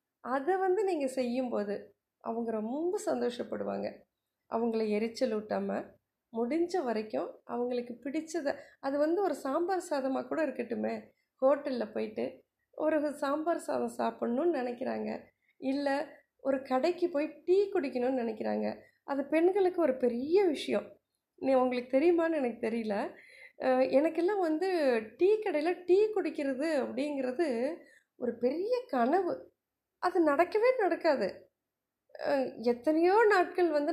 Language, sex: Tamil, female